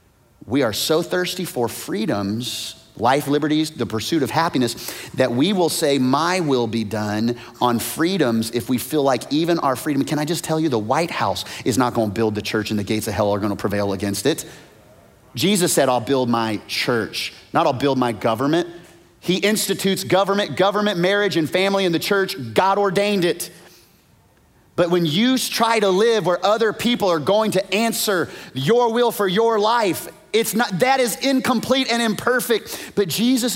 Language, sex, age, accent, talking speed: English, male, 30-49, American, 185 wpm